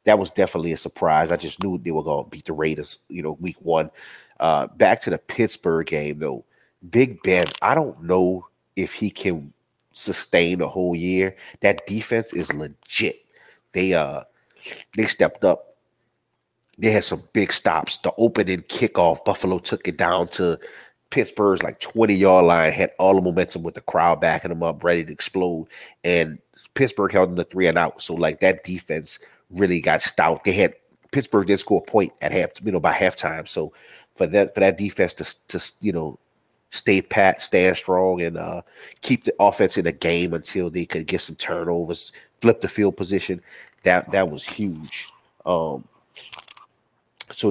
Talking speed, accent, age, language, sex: 180 wpm, American, 30-49, English, male